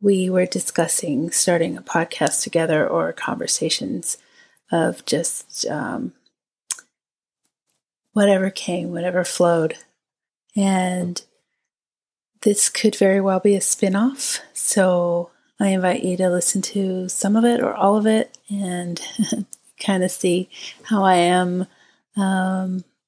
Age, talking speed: 30-49, 120 wpm